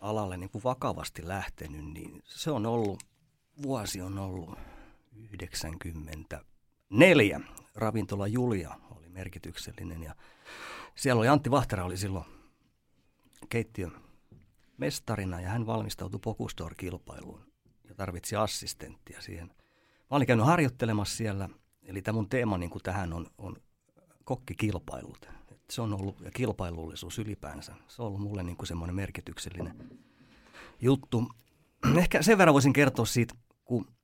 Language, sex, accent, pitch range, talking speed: Finnish, male, native, 95-120 Hz, 120 wpm